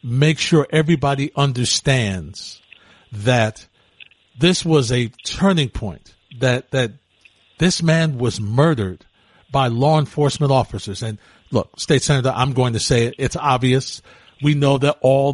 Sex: male